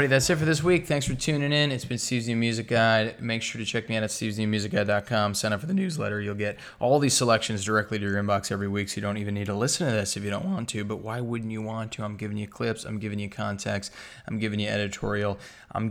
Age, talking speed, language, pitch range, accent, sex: 20-39, 275 wpm, English, 105-120 Hz, American, male